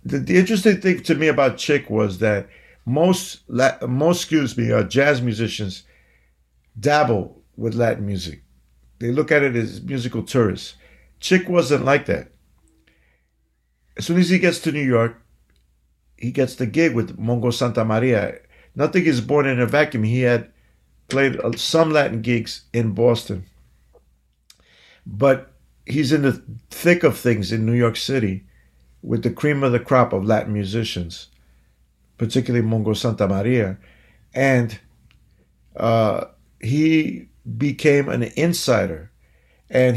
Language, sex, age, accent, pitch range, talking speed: English, male, 50-69, American, 105-135 Hz, 140 wpm